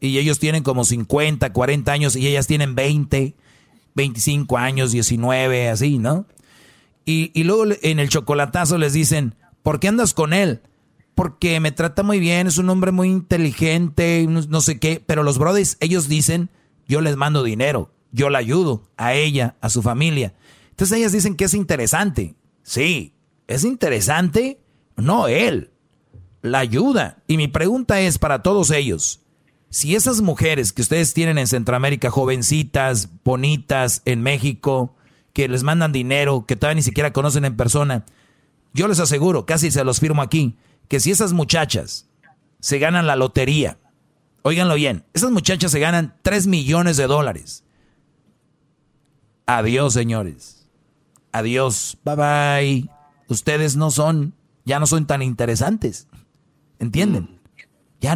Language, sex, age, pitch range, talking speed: Spanish, male, 40-59, 130-160 Hz, 150 wpm